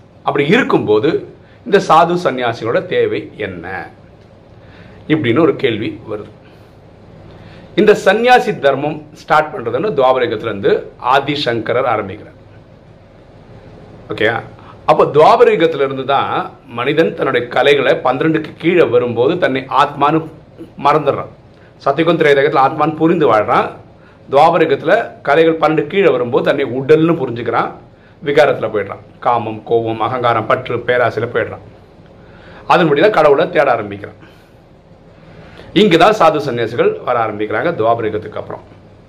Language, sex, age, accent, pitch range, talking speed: Tamil, male, 40-59, native, 120-195 Hz, 90 wpm